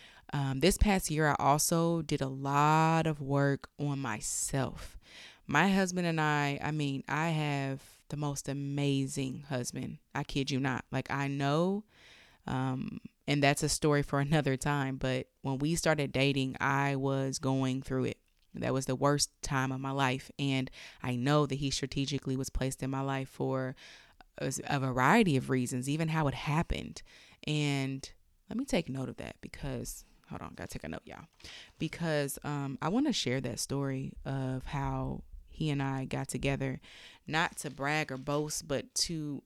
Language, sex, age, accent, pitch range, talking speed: English, female, 20-39, American, 135-155 Hz, 175 wpm